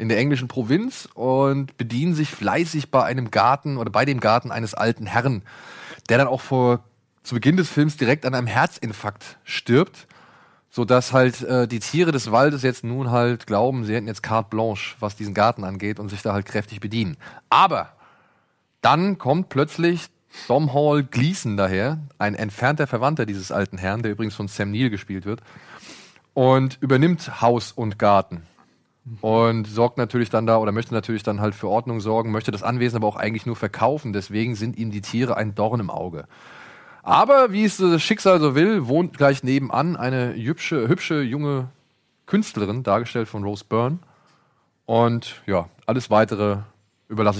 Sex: male